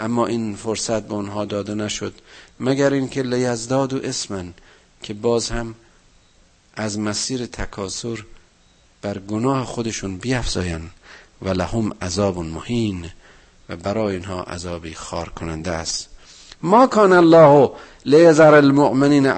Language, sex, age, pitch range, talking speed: Persian, male, 50-69, 100-145 Hz, 120 wpm